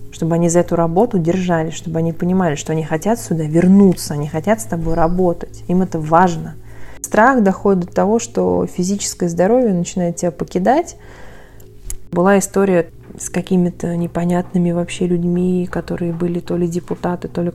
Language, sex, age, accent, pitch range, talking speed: Russian, female, 20-39, native, 165-180 Hz, 155 wpm